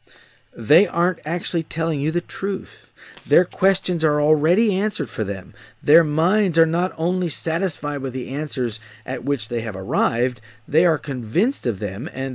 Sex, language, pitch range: male, English, 120-155 Hz